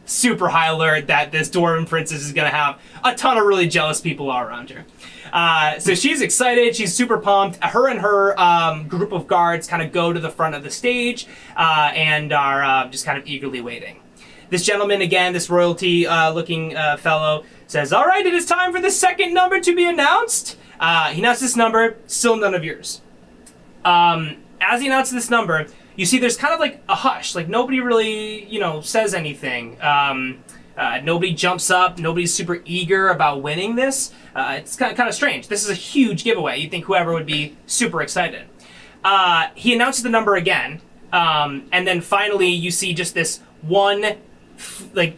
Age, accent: 20-39, American